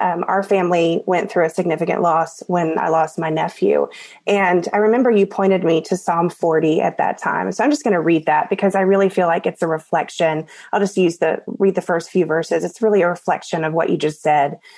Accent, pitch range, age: American, 170-205 Hz, 20-39